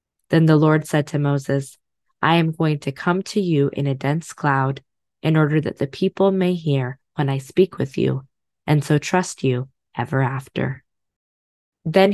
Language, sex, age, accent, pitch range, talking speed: English, female, 20-39, American, 135-165 Hz, 180 wpm